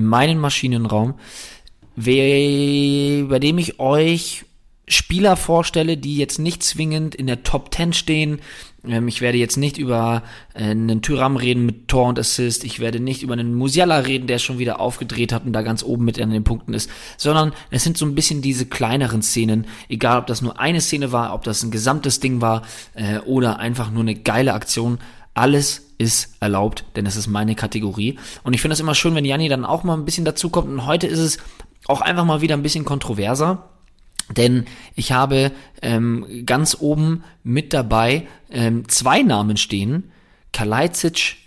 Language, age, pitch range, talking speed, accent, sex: German, 20-39, 115-145 Hz, 180 wpm, German, male